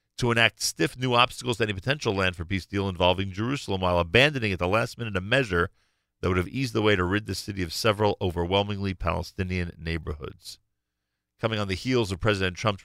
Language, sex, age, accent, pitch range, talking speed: English, male, 50-69, American, 90-115 Hz, 205 wpm